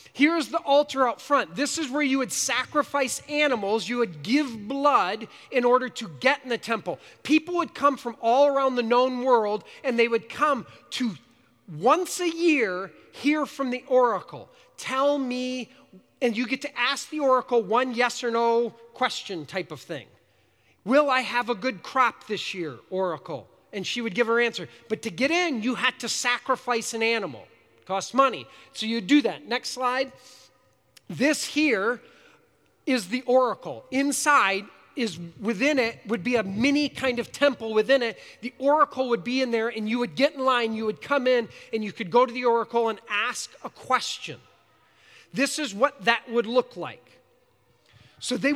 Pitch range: 230-275 Hz